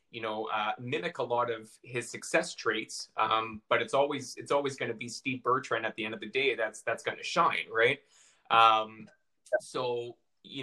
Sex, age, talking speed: male, 30-49, 205 wpm